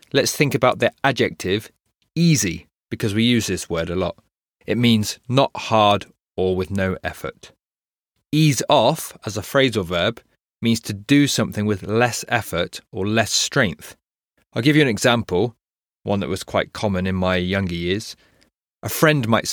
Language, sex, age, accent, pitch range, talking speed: English, male, 30-49, British, 95-120 Hz, 165 wpm